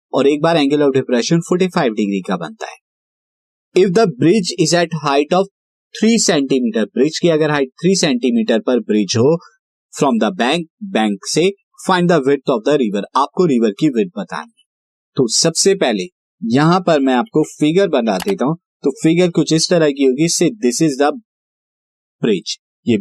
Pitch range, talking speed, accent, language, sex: 125-180 Hz, 175 wpm, native, Hindi, male